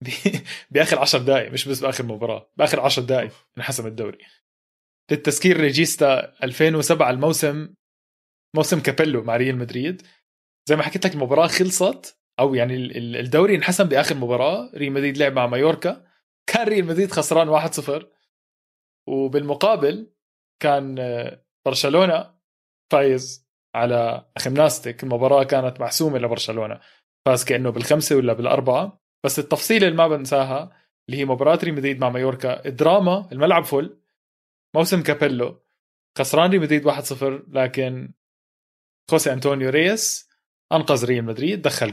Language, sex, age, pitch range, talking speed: Arabic, male, 20-39, 130-165 Hz, 125 wpm